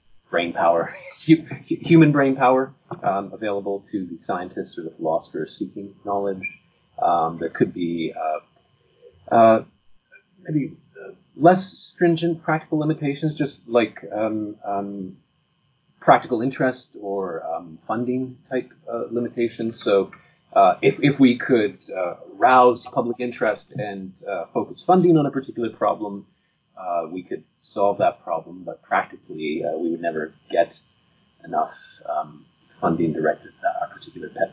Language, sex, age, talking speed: English, male, 30-49, 135 wpm